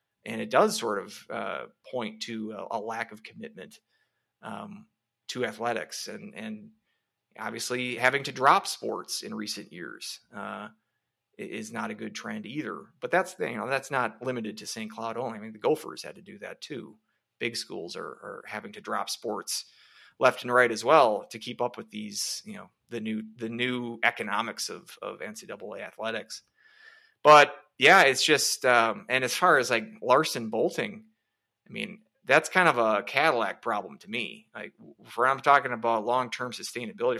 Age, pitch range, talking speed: 30-49, 115-160 Hz, 180 wpm